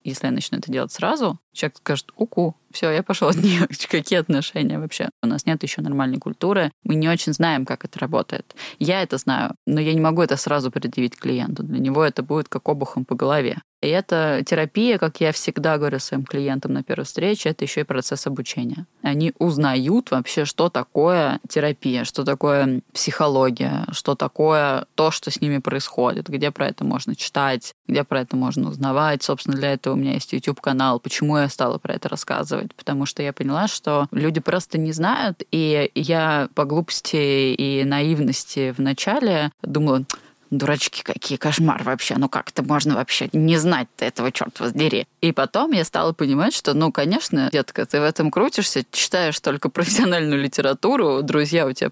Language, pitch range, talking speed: Russian, 140-165 Hz, 180 wpm